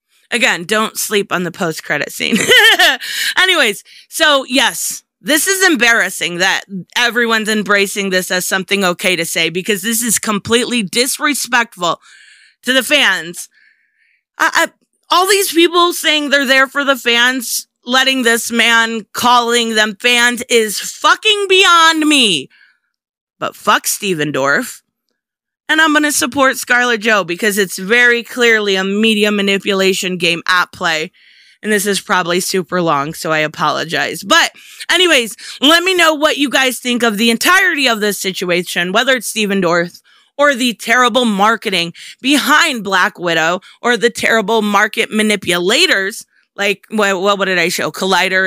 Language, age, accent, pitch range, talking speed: English, 30-49, American, 190-260 Hz, 145 wpm